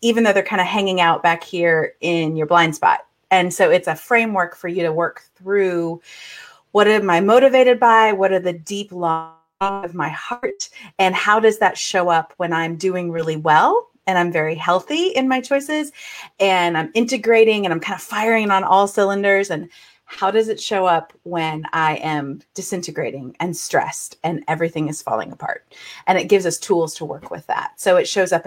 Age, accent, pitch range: 30-49, American, 170-220 Hz